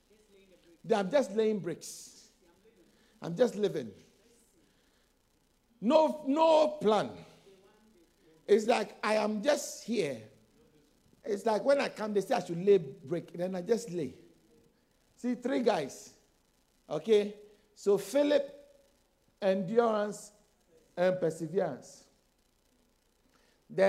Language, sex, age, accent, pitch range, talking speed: English, male, 50-69, Nigerian, 195-255 Hz, 100 wpm